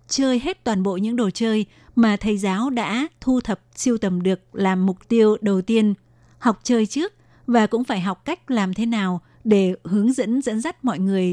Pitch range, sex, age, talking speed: 195-230 Hz, female, 20-39, 205 wpm